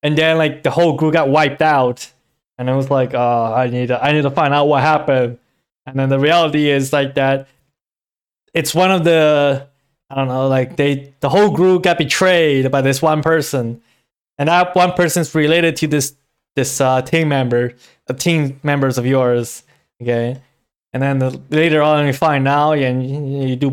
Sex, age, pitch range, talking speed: male, 20-39, 135-165 Hz, 190 wpm